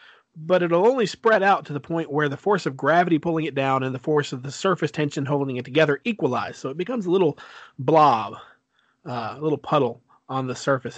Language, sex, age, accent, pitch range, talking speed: English, male, 40-59, American, 135-185 Hz, 220 wpm